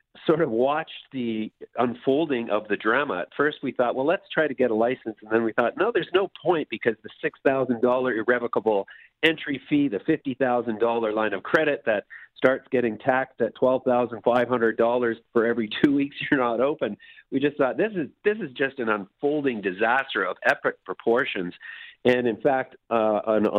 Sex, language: male, English